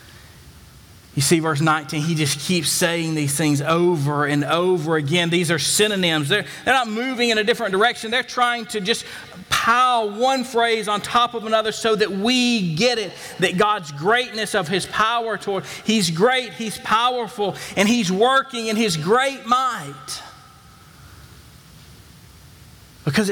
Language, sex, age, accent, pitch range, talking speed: English, male, 40-59, American, 145-225 Hz, 155 wpm